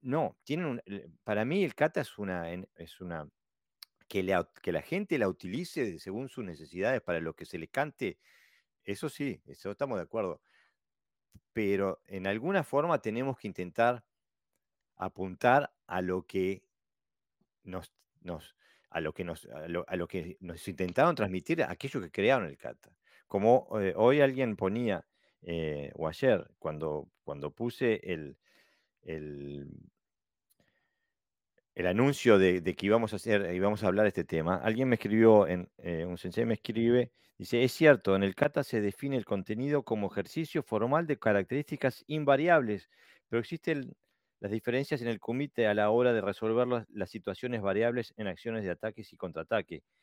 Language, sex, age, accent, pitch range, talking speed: Spanish, male, 40-59, Argentinian, 90-125 Hz, 165 wpm